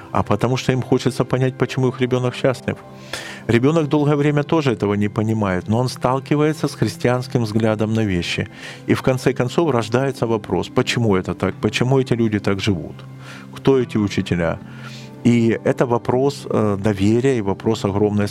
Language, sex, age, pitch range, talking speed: Ukrainian, male, 40-59, 100-130 Hz, 160 wpm